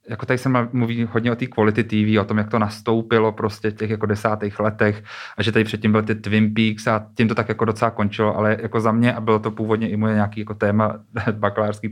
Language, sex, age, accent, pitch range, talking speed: Czech, male, 30-49, native, 105-120 Hz, 240 wpm